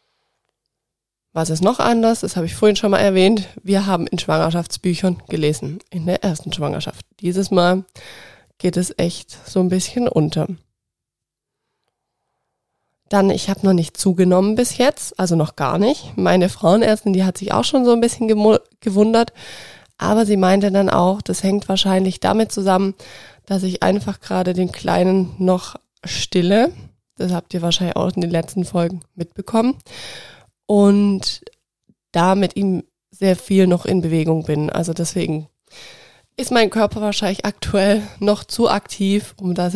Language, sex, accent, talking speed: German, female, German, 155 wpm